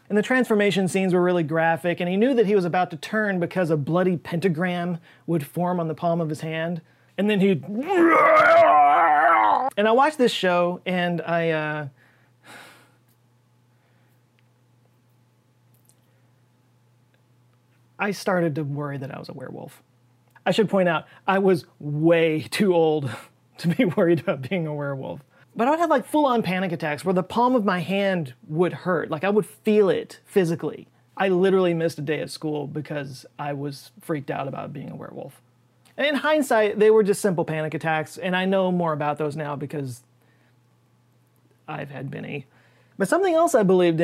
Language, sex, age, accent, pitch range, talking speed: English, male, 30-49, American, 140-195 Hz, 175 wpm